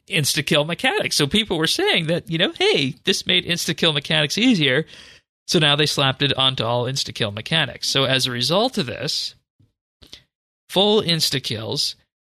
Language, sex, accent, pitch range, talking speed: English, male, American, 120-150 Hz, 155 wpm